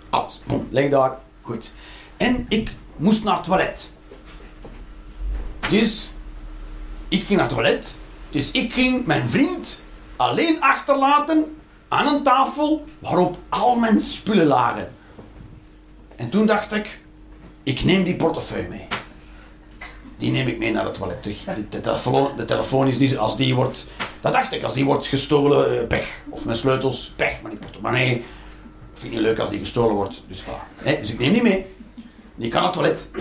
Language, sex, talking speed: Dutch, male, 170 wpm